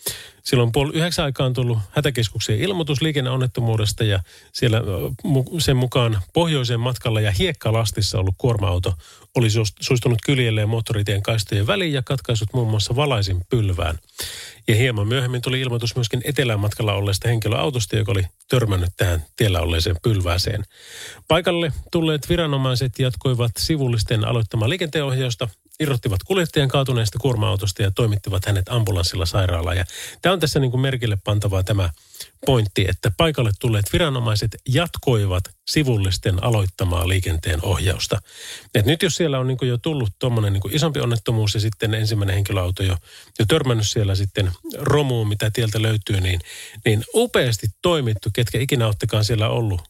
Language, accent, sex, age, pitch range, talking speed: Finnish, native, male, 30-49, 100-130 Hz, 140 wpm